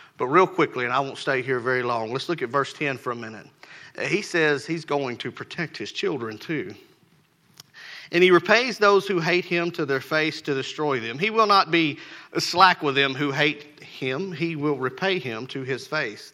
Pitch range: 135-175 Hz